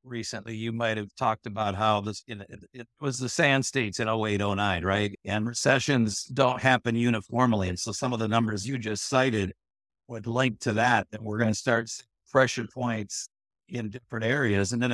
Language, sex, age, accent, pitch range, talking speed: English, male, 60-79, American, 110-125 Hz, 200 wpm